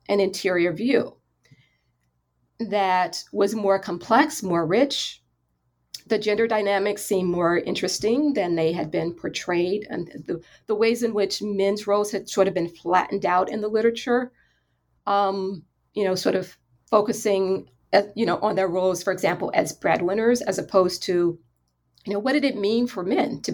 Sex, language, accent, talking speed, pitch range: female, English, American, 165 wpm, 160-205 Hz